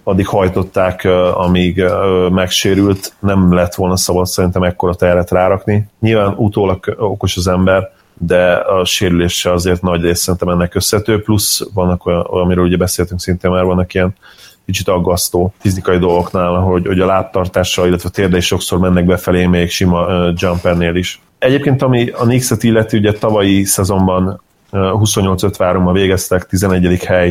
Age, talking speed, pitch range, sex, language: 30-49, 155 wpm, 90-100 Hz, male, Hungarian